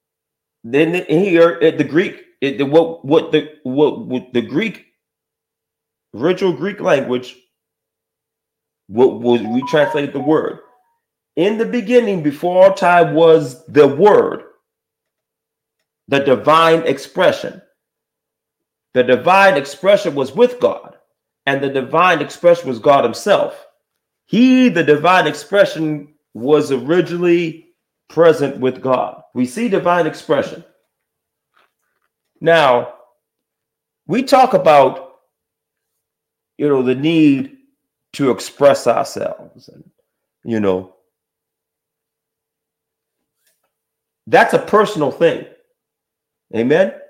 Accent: American